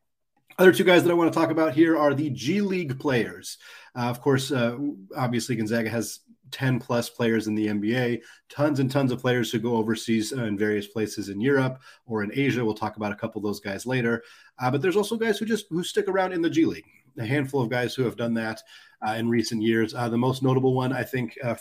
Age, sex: 30-49, male